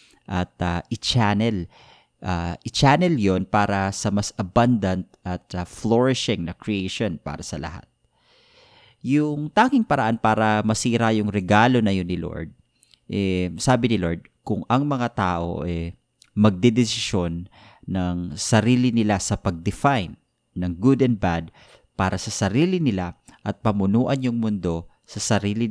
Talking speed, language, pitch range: 135 wpm, Filipino, 90-120 Hz